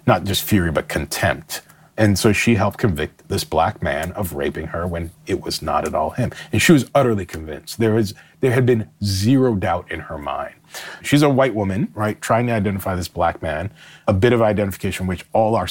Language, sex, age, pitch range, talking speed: English, male, 30-49, 85-115 Hz, 210 wpm